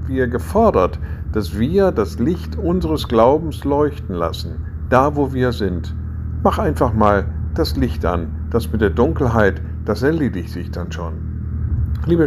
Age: 50-69